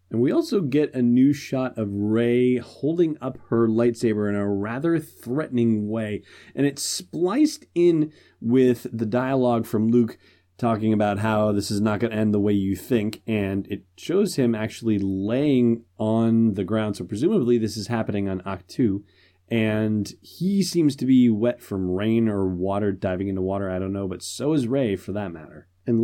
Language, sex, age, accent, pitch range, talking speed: English, male, 30-49, American, 100-125 Hz, 185 wpm